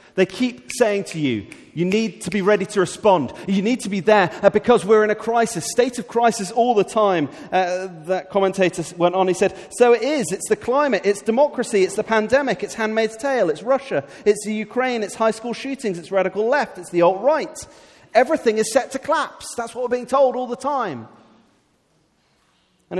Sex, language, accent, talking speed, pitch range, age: male, English, British, 205 wpm, 135-220 Hz, 30-49